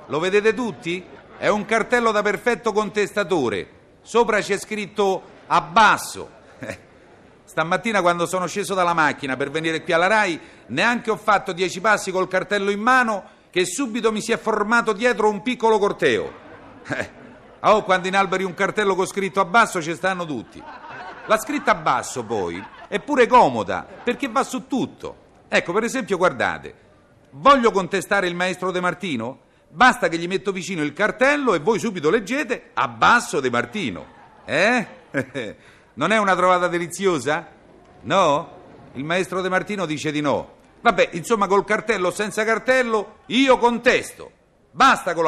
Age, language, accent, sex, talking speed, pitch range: 50-69, Italian, native, male, 155 wpm, 185-235 Hz